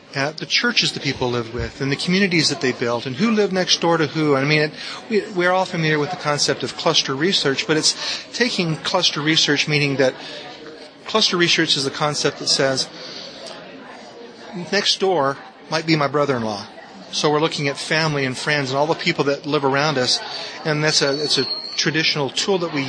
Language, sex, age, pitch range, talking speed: English, male, 40-59, 140-170 Hz, 205 wpm